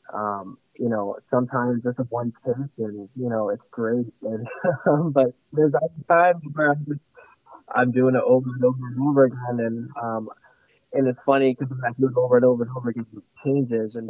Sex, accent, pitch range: male, American, 120-140 Hz